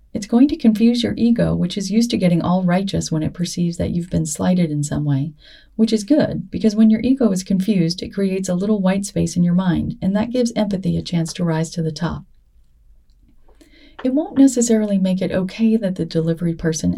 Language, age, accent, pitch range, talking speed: English, 40-59, American, 170-225 Hz, 220 wpm